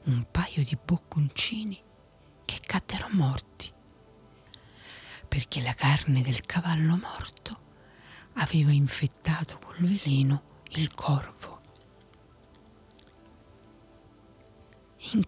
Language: Italian